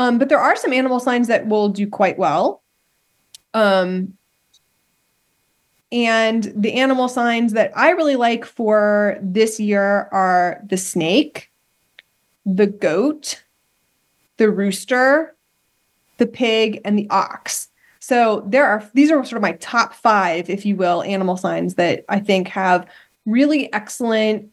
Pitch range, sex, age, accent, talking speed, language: 195-245 Hz, female, 20-39, American, 140 wpm, English